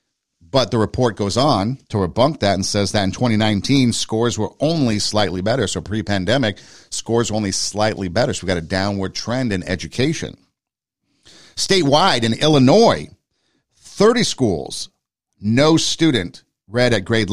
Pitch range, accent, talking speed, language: 100-135 Hz, American, 150 wpm, English